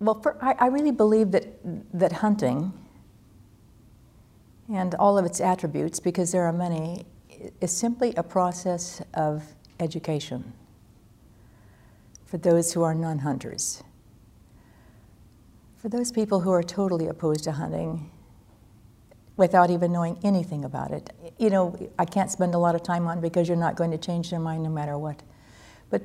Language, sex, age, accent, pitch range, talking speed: English, female, 60-79, American, 155-190 Hz, 150 wpm